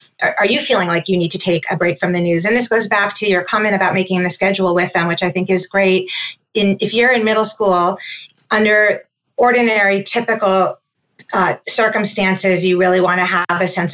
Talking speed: 205 wpm